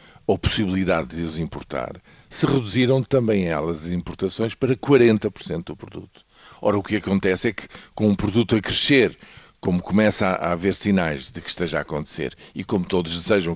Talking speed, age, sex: 175 wpm, 50-69, male